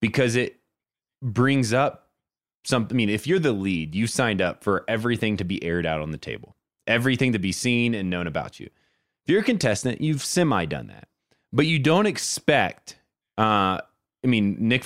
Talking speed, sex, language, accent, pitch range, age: 180 wpm, male, English, American, 95-140 Hz, 20-39